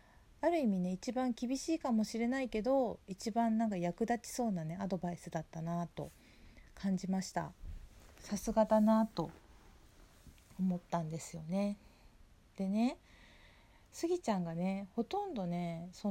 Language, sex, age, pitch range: Japanese, female, 40-59, 175-240 Hz